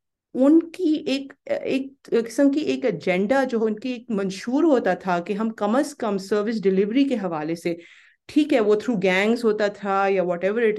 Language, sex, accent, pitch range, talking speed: English, female, Indian, 180-230 Hz, 130 wpm